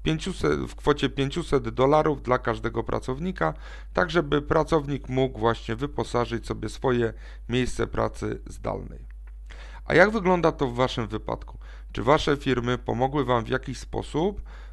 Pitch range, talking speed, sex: 115-145 Hz, 135 wpm, male